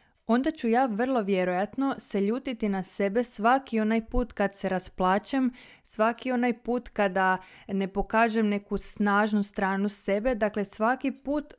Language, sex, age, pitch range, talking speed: Croatian, female, 20-39, 195-235 Hz, 145 wpm